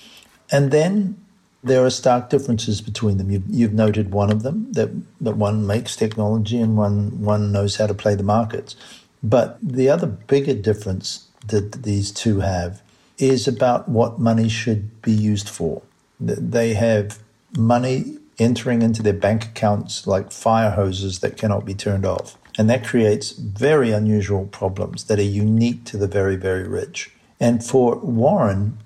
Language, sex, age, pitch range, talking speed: Italian, male, 50-69, 100-120 Hz, 160 wpm